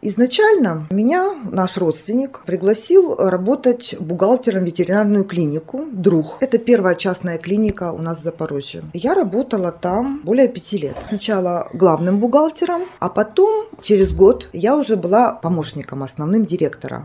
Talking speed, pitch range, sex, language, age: 135 wpm, 170-230 Hz, female, Ukrainian, 20-39